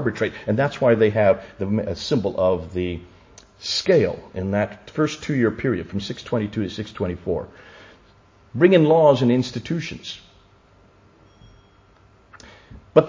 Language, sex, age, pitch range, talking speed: English, male, 50-69, 100-130 Hz, 115 wpm